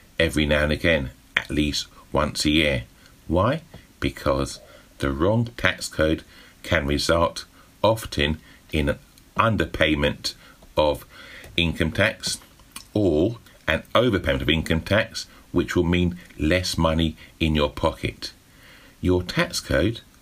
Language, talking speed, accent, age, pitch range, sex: English, 120 wpm, British, 50-69, 80-100 Hz, male